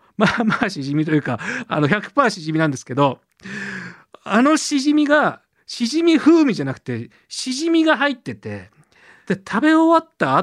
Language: Japanese